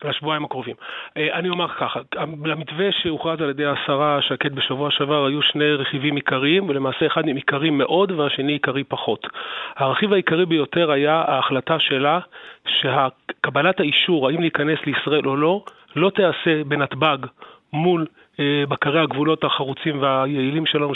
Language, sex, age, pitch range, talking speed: English, male, 30-49, 140-160 Hz, 135 wpm